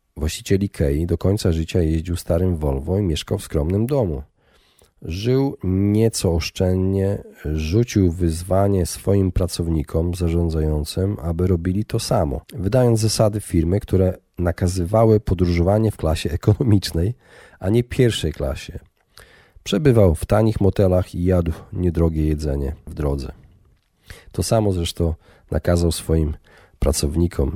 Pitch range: 85-100 Hz